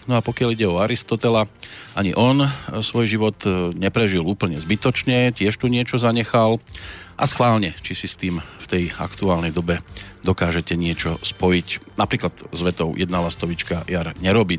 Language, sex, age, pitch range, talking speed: Slovak, male, 40-59, 90-120 Hz, 150 wpm